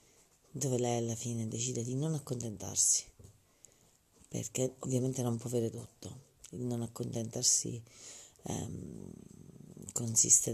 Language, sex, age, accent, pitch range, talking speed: Italian, female, 40-59, native, 115-135 Hz, 110 wpm